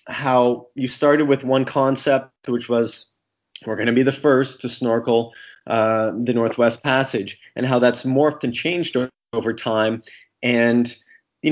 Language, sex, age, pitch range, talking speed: English, male, 30-49, 110-130 Hz, 155 wpm